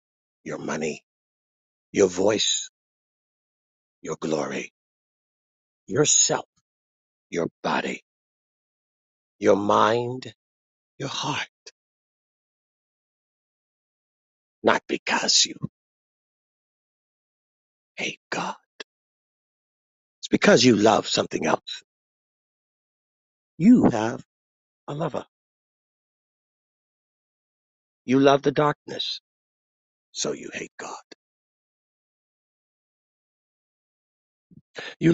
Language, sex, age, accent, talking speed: English, male, 50-69, American, 65 wpm